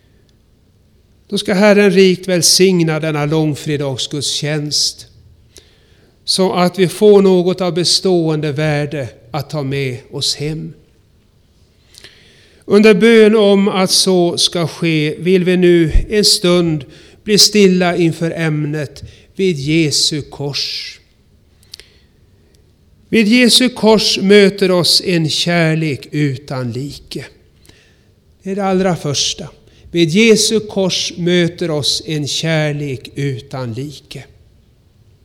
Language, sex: Swedish, male